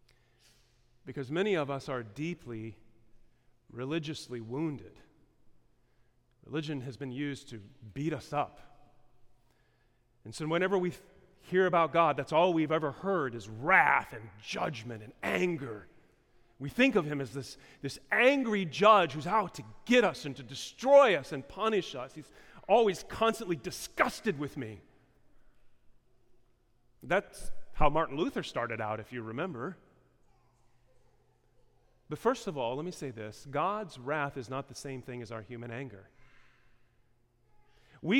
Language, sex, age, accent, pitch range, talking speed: English, male, 40-59, American, 120-185 Hz, 140 wpm